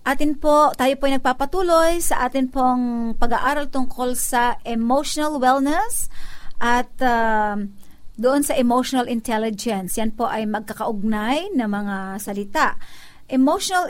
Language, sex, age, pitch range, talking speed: Filipino, female, 50-69, 230-280 Hz, 120 wpm